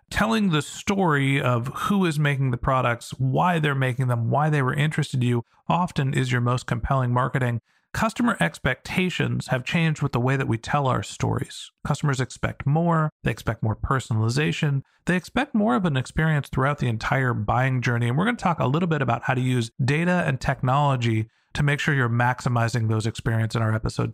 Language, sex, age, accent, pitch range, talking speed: English, male, 40-59, American, 130-180 Hz, 200 wpm